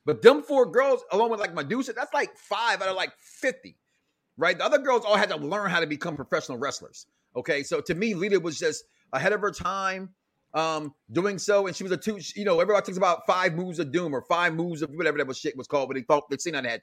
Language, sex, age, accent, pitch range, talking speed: English, male, 30-49, American, 165-230 Hz, 265 wpm